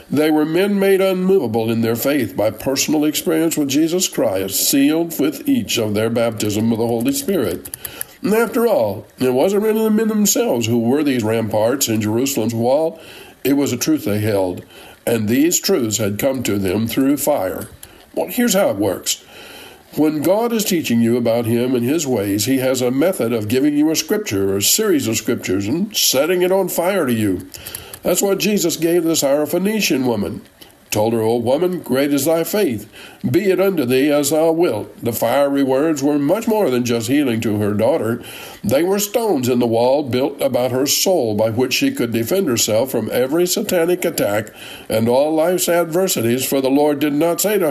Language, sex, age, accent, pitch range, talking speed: English, male, 50-69, American, 120-180 Hz, 195 wpm